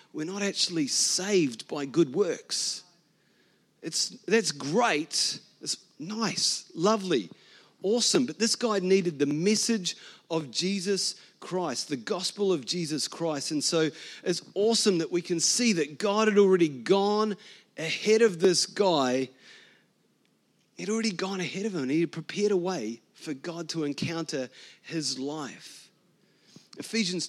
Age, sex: 30-49, male